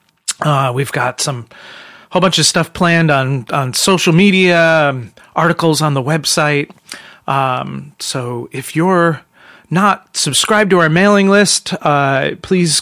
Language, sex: English, male